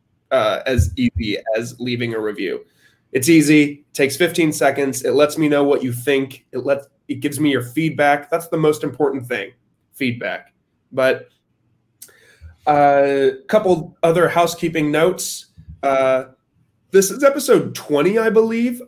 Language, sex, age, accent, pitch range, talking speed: English, male, 20-39, American, 130-165 Hz, 145 wpm